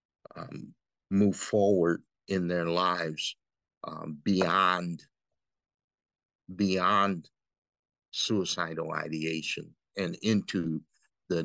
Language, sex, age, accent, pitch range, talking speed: English, male, 50-69, American, 85-100 Hz, 75 wpm